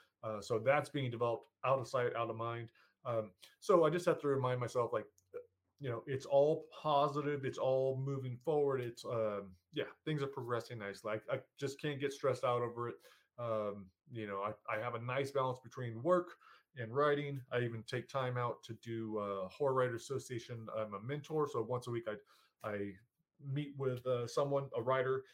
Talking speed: 200 wpm